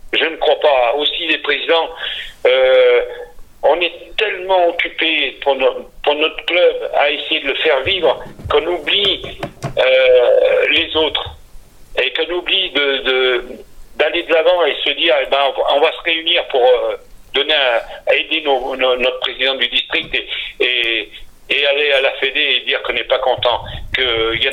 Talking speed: 175 wpm